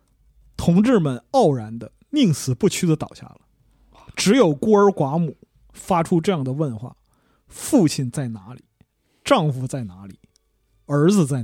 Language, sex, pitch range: Chinese, male, 120-185 Hz